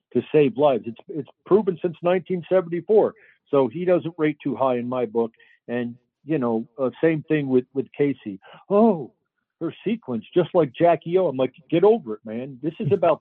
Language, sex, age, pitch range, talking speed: English, male, 60-79, 120-150 Hz, 190 wpm